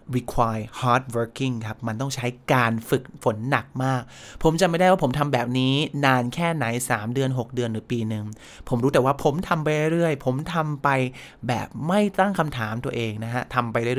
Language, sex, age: Thai, male, 20-39